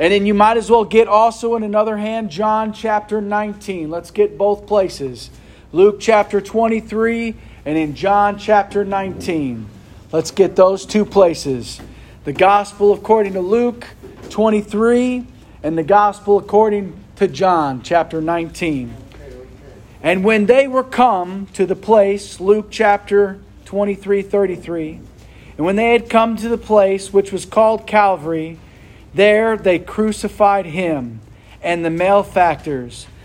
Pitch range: 165-210 Hz